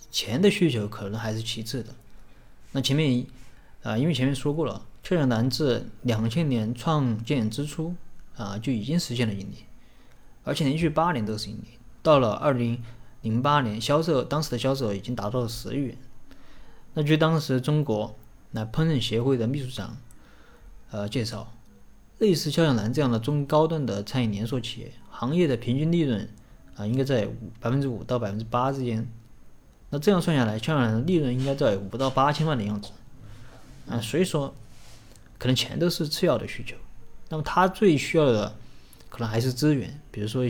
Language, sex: Chinese, male